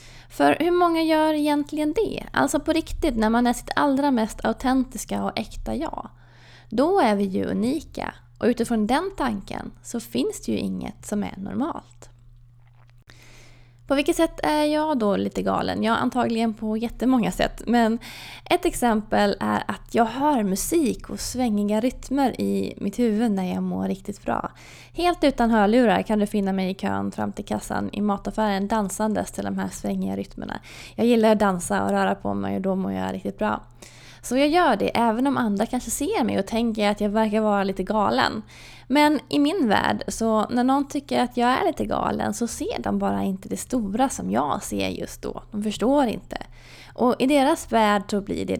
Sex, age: female, 20-39